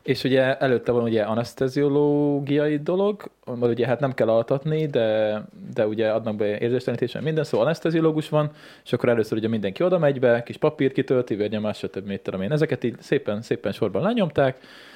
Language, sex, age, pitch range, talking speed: Hungarian, male, 20-39, 115-150 Hz, 175 wpm